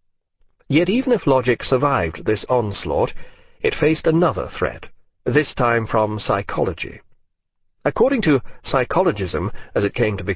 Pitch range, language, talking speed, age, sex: 110-145 Hz, English, 135 wpm, 40-59, male